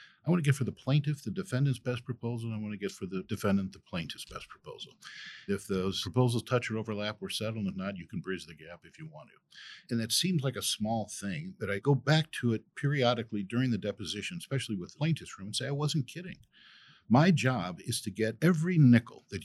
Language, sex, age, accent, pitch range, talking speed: English, male, 50-69, American, 110-145 Hz, 235 wpm